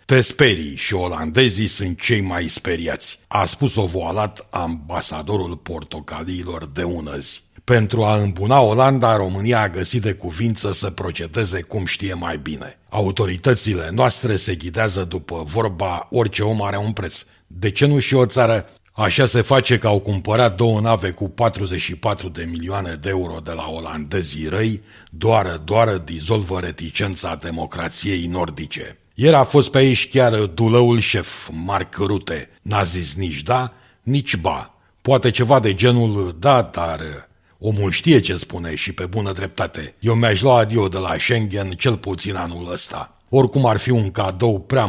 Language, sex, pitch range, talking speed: Romanian, male, 90-115 Hz, 155 wpm